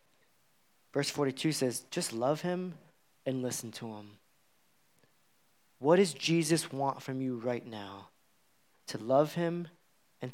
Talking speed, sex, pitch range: 130 wpm, male, 140-180 Hz